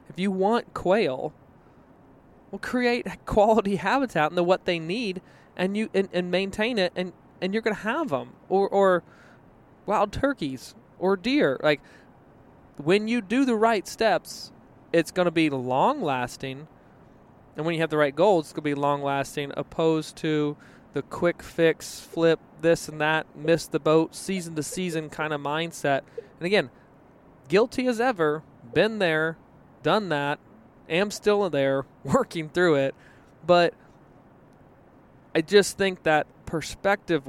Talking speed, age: 160 wpm, 20-39